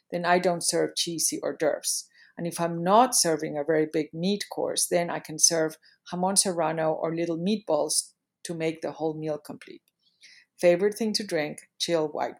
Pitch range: 155-195 Hz